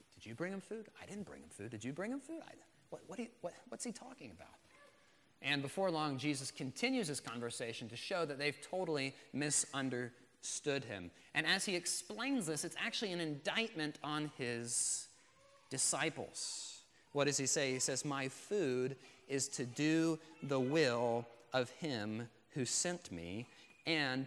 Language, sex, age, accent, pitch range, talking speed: English, male, 30-49, American, 130-175 Hz, 155 wpm